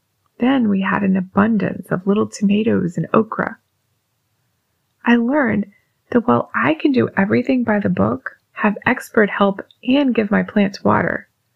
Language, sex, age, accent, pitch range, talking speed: English, female, 20-39, American, 195-250 Hz, 150 wpm